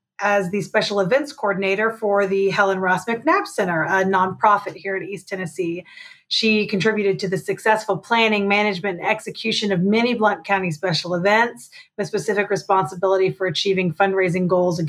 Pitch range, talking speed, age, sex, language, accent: 190-220 Hz, 160 wpm, 30-49, female, English, American